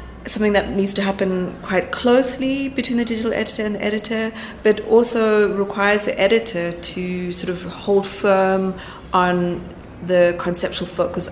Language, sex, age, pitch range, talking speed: English, female, 30-49, 175-200 Hz, 150 wpm